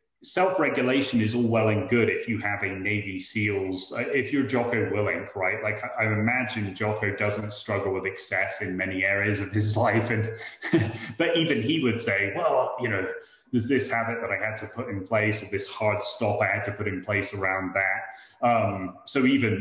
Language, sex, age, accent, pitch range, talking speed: English, male, 30-49, British, 100-120 Hz, 200 wpm